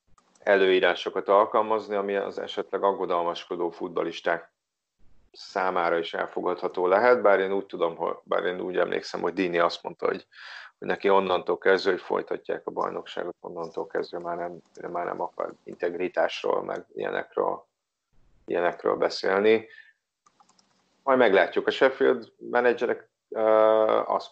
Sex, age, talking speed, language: male, 40-59, 130 wpm, Hungarian